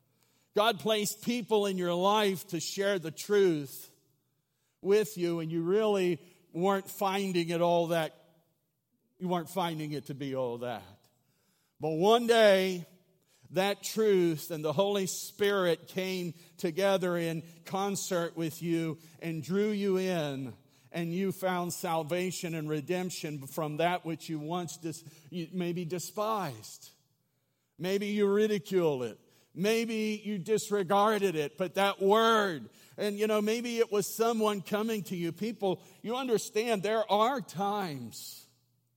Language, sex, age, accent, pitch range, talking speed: English, male, 50-69, American, 155-200 Hz, 135 wpm